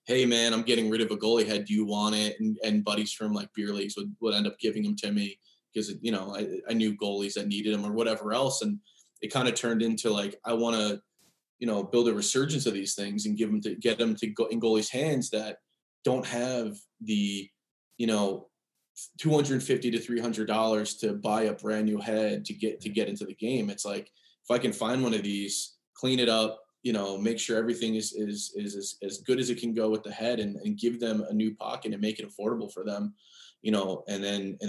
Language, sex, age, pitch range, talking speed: English, male, 20-39, 105-120 Hz, 240 wpm